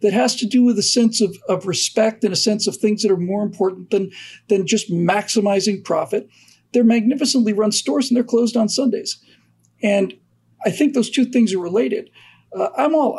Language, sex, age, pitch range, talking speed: English, male, 50-69, 170-225 Hz, 200 wpm